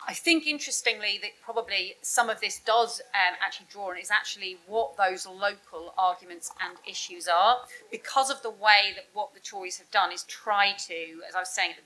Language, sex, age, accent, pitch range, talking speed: English, female, 40-59, British, 185-235 Hz, 210 wpm